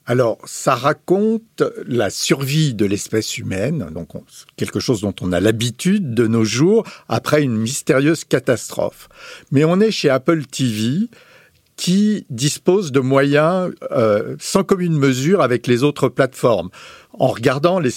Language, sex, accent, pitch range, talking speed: French, male, French, 120-170 Hz, 145 wpm